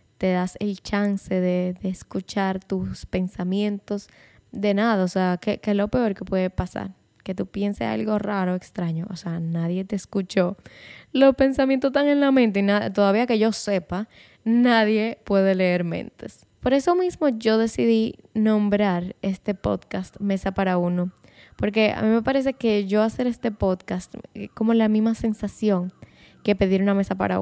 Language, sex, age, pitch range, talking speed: Spanish, female, 10-29, 185-225 Hz, 170 wpm